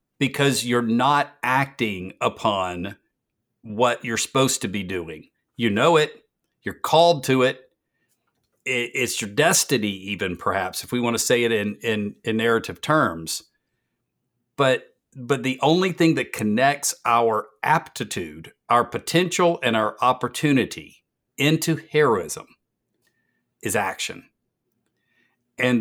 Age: 50-69